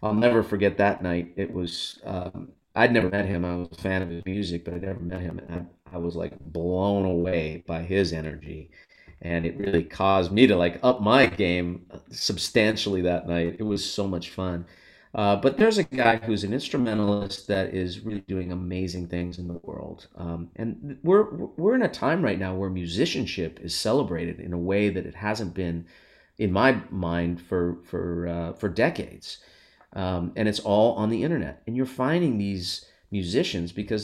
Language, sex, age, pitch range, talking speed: English, male, 30-49, 90-110 Hz, 195 wpm